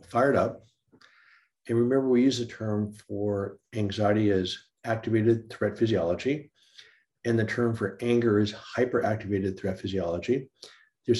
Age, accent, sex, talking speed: 50-69, American, male, 130 wpm